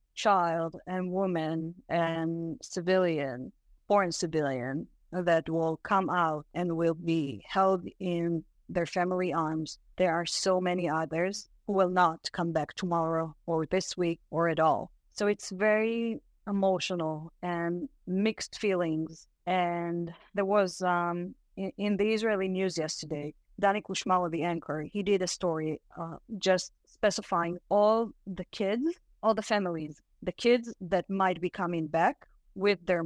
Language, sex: English, female